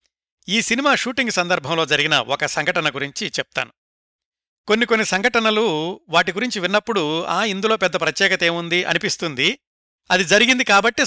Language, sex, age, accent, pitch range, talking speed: Telugu, male, 60-79, native, 150-205 Hz, 130 wpm